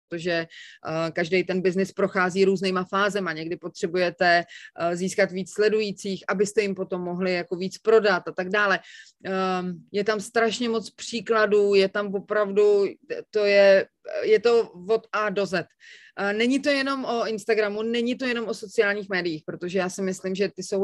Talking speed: 175 wpm